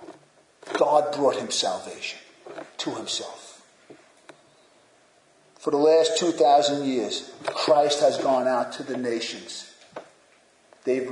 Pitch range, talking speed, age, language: 180-250 Hz, 105 wpm, 50-69, English